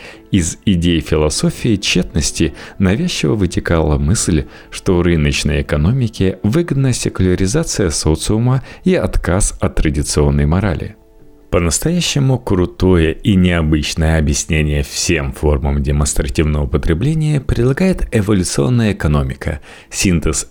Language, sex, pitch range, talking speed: Russian, male, 75-115 Hz, 95 wpm